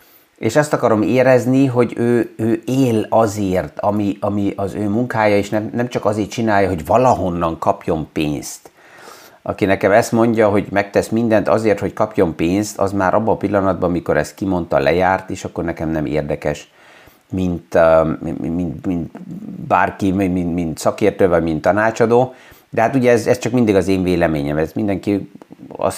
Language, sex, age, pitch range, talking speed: Hungarian, male, 50-69, 95-115 Hz, 170 wpm